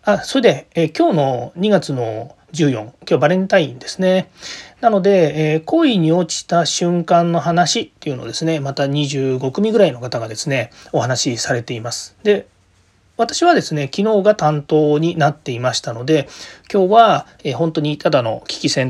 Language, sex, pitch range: Japanese, male, 135-185 Hz